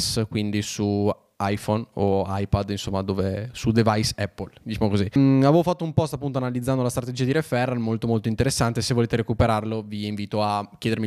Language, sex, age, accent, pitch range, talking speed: Italian, male, 10-29, native, 105-125 Hz, 180 wpm